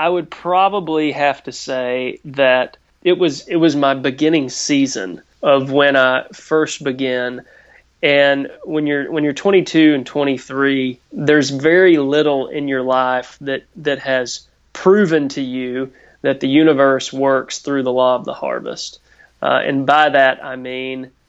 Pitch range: 130-150 Hz